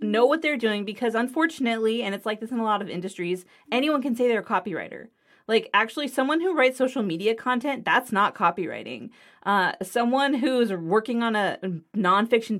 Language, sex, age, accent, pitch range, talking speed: English, female, 30-49, American, 200-260 Hz, 185 wpm